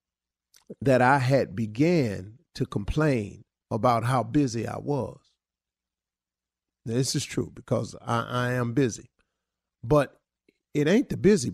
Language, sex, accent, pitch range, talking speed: English, male, American, 125-180 Hz, 125 wpm